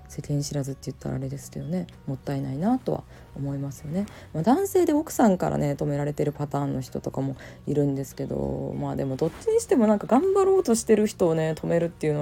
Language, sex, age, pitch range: Japanese, female, 20-39, 140-215 Hz